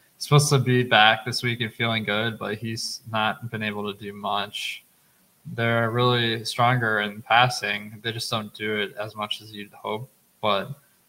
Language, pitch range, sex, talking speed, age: English, 105-125 Hz, male, 180 wpm, 20-39